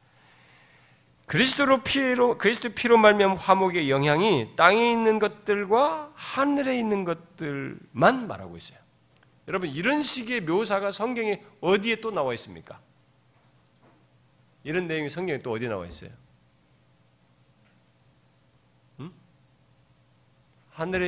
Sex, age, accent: male, 40-59, native